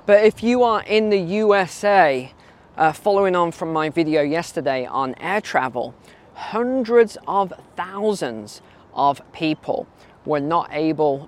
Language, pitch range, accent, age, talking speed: English, 140-205 Hz, British, 20-39, 130 wpm